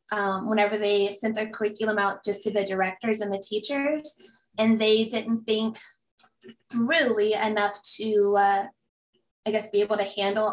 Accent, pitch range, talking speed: American, 205-230 Hz, 160 wpm